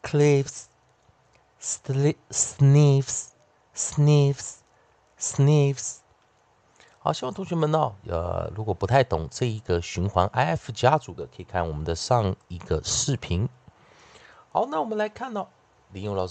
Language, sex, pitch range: Chinese, male, 95-145 Hz